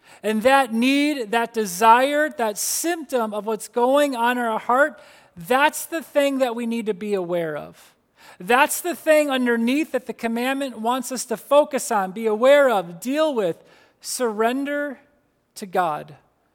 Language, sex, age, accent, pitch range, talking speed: English, male, 30-49, American, 215-285 Hz, 160 wpm